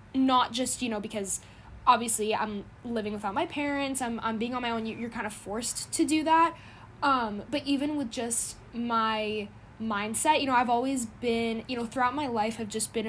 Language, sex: English, female